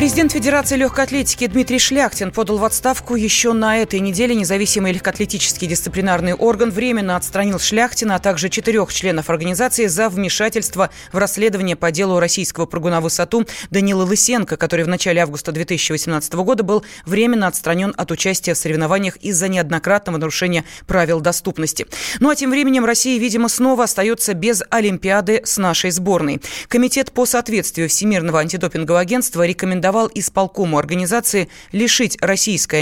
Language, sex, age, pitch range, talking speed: Russian, female, 20-39, 175-230 Hz, 140 wpm